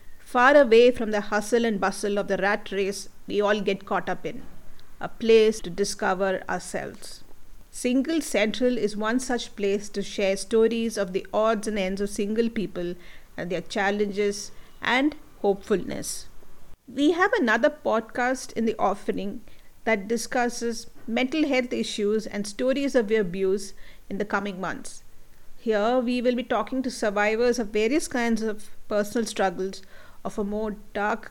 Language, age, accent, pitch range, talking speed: English, 50-69, Indian, 205-245 Hz, 155 wpm